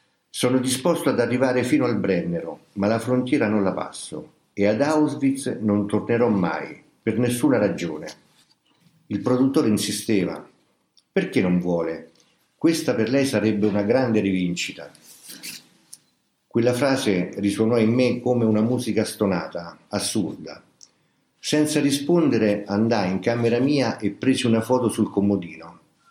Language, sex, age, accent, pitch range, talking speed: Italian, male, 50-69, native, 100-125 Hz, 130 wpm